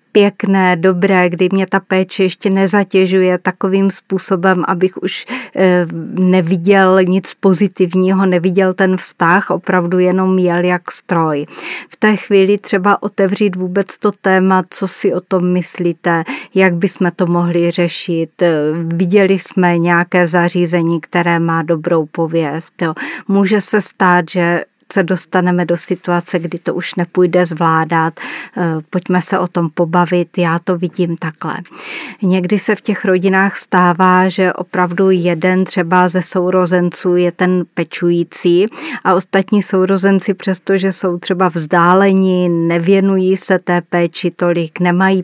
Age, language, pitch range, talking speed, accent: 30-49, Czech, 175-190 Hz, 130 wpm, native